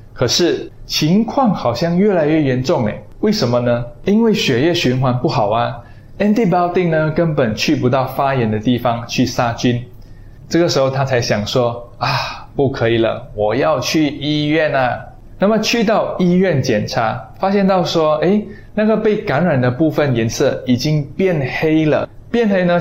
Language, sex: Chinese, male